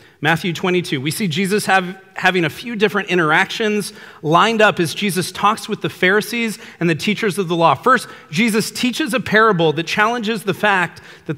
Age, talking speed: 40-59, 180 wpm